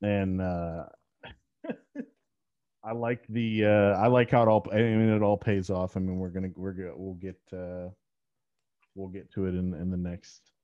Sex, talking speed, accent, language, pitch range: male, 205 wpm, American, English, 90-105 Hz